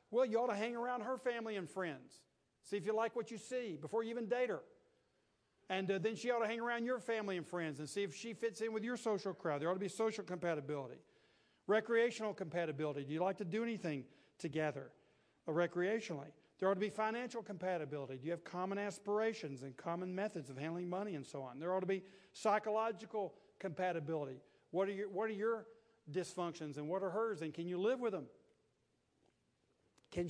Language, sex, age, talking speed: English, male, 50-69, 205 wpm